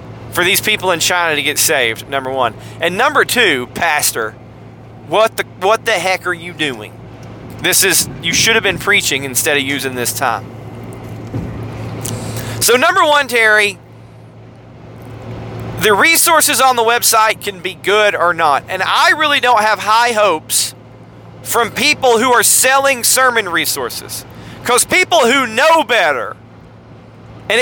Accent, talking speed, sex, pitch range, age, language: American, 150 wpm, male, 165-255 Hz, 30-49, English